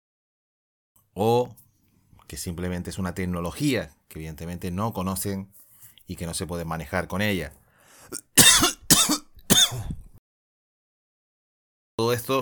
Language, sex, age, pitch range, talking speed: Spanish, male, 30-49, 90-110 Hz, 95 wpm